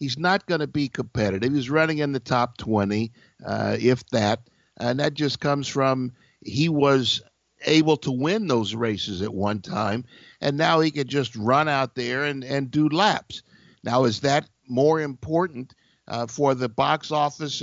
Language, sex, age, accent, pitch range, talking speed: English, male, 60-79, American, 125-165 Hz, 175 wpm